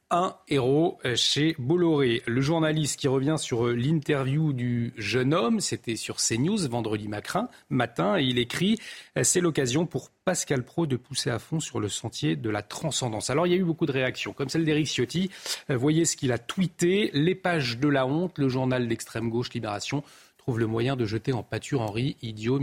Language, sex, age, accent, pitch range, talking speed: French, male, 40-59, French, 115-155 Hz, 200 wpm